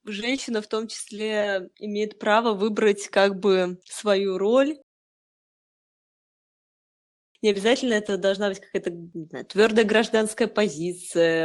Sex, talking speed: female, 105 wpm